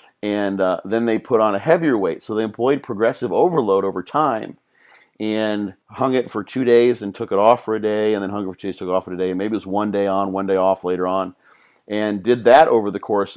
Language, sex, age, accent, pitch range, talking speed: English, male, 50-69, American, 95-115 Hz, 265 wpm